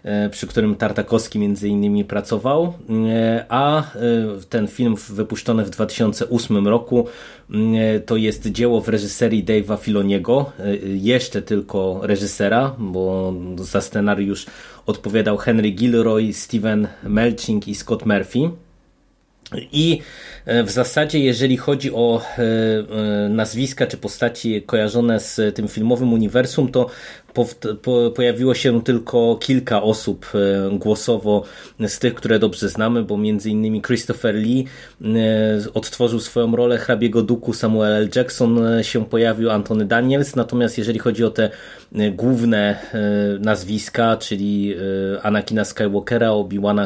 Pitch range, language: 105-120 Hz, Polish